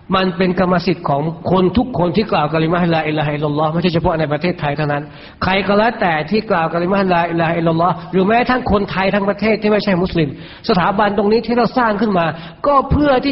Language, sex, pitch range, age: Thai, male, 165-210 Hz, 60-79